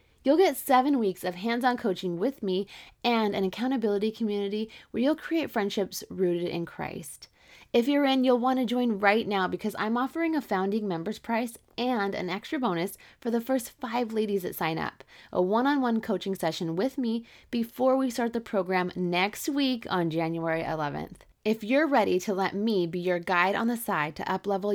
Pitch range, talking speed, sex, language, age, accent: 180-235 Hz, 190 wpm, female, English, 20-39, American